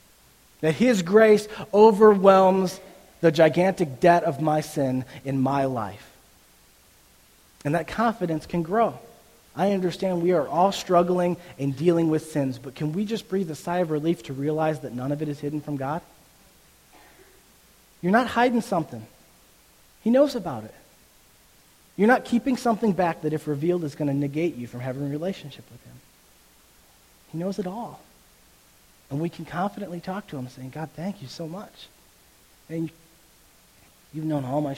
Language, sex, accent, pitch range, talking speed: English, male, American, 130-175 Hz, 165 wpm